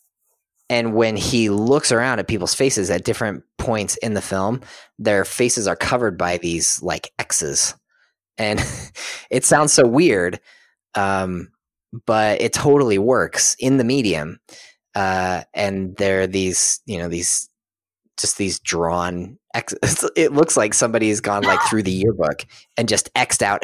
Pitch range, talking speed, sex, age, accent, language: 90-120 Hz, 155 wpm, male, 30-49, American, English